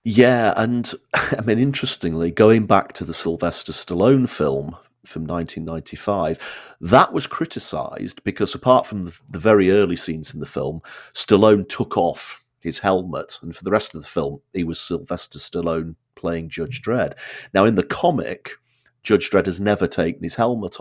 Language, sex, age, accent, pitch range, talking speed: English, male, 40-59, British, 80-105 Hz, 165 wpm